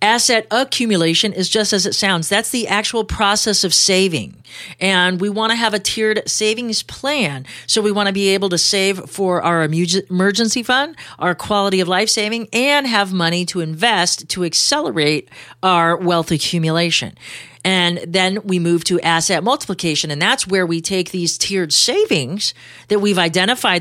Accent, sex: American, female